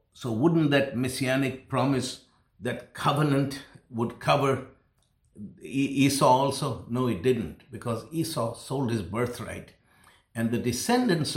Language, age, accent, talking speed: English, 60-79, Indian, 115 wpm